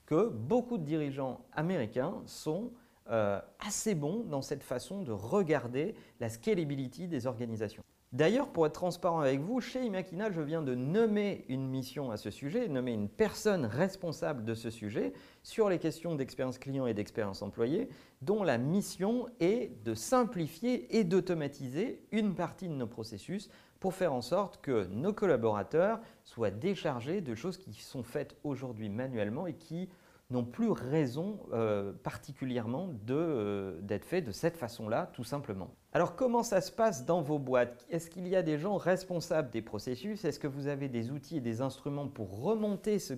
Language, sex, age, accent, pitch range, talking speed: French, male, 40-59, French, 125-185 Hz, 170 wpm